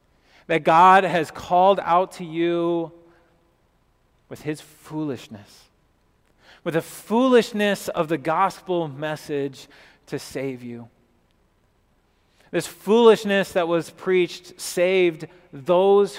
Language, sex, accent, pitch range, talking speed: English, male, American, 140-170 Hz, 100 wpm